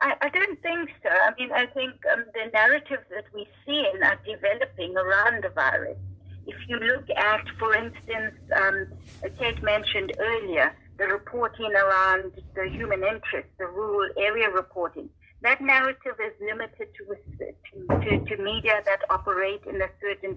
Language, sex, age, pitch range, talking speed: English, female, 50-69, 190-250 Hz, 155 wpm